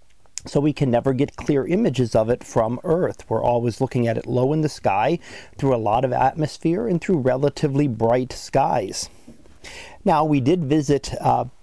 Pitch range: 120-145 Hz